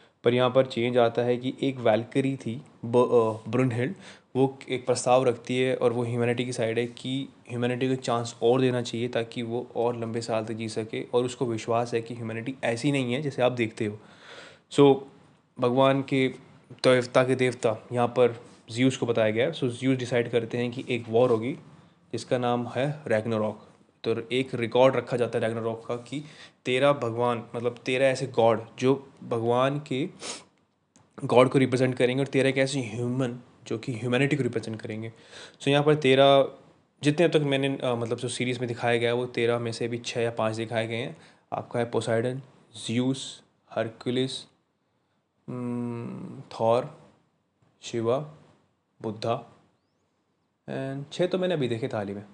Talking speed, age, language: 180 wpm, 20-39, Hindi